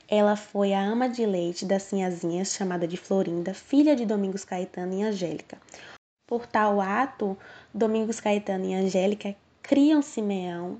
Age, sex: 10-29, female